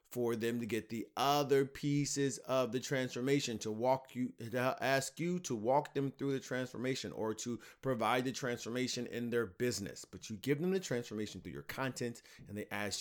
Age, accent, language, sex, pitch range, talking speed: 30-49, American, English, male, 110-135 Hz, 195 wpm